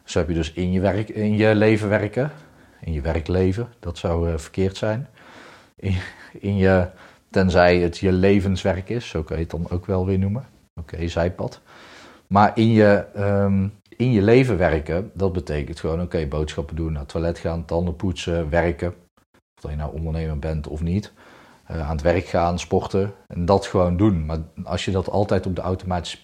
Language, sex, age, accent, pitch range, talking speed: Dutch, male, 40-59, Dutch, 85-100 Hz, 195 wpm